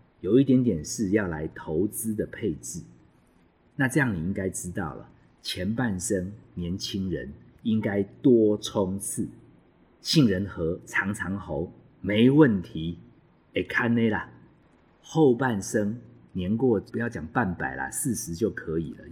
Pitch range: 85-110 Hz